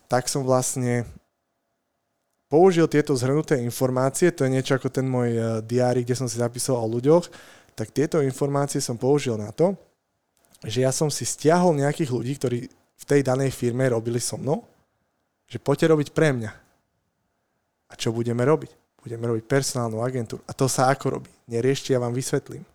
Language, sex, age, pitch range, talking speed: Slovak, male, 20-39, 115-140 Hz, 170 wpm